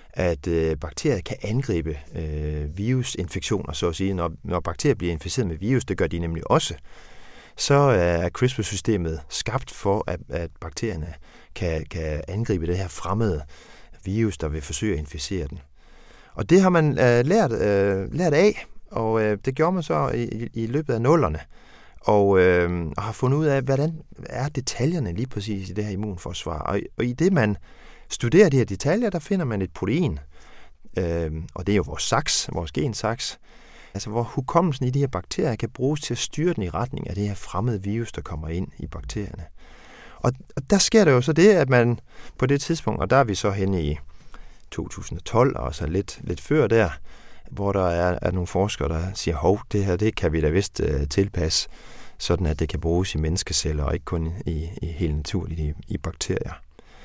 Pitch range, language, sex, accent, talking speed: 85-120 Hz, Danish, male, native, 190 wpm